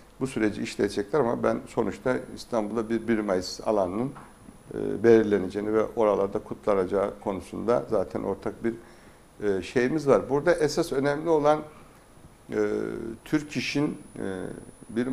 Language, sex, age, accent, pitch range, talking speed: Turkish, male, 60-79, native, 115-140 Hz, 110 wpm